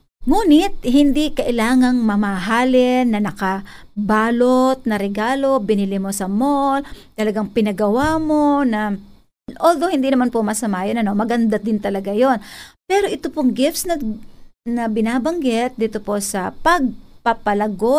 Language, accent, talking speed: Filipino, native, 125 wpm